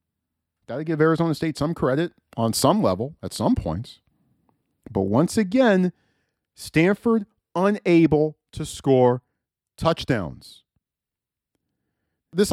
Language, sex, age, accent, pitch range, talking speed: English, male, 40-59, American, 105-155 Hz, 105 wpm